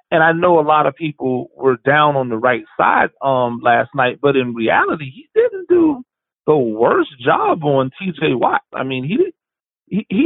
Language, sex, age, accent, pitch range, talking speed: English, male, 30-49, American, 135-180 Hz, 195 wpm